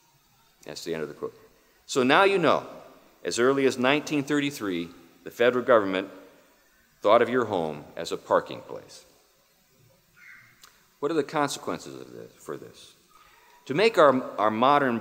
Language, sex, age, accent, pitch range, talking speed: English, male, 50-69, American, 110-155 Hz, 150 wpm